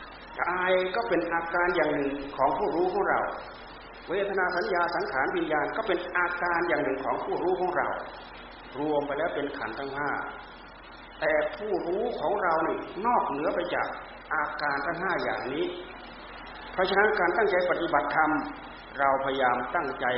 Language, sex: Thai, male